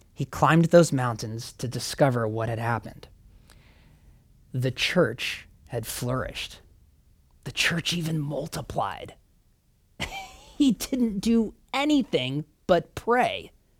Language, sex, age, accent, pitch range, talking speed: English, male, 30-49, American, 160-230 Hz, 100 wpm